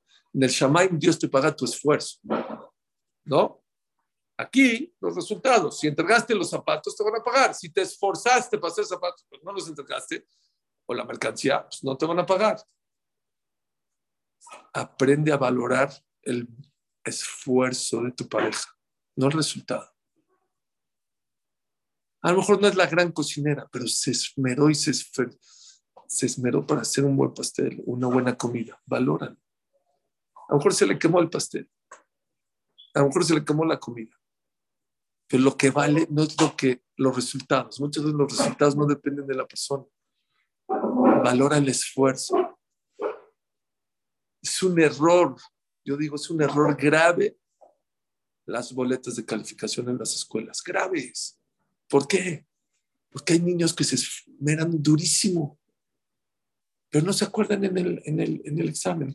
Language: English